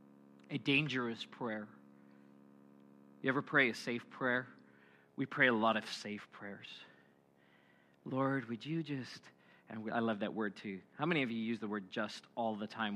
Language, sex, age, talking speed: English, male, 40-59, 170 wpm